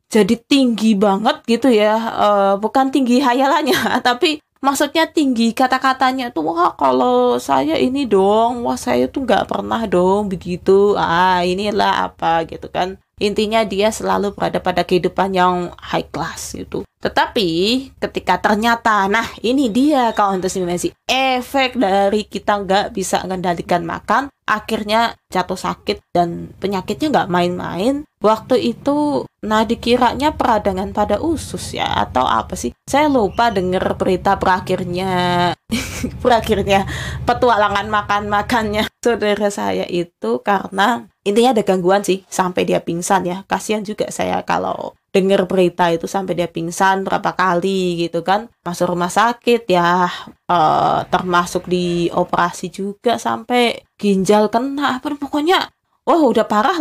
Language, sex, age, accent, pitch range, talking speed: Indonesian, female, 20-39, native, 180-235 Hz, 130 wpm